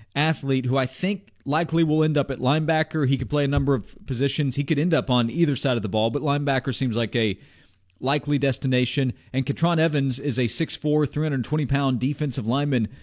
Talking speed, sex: 210 wpm, male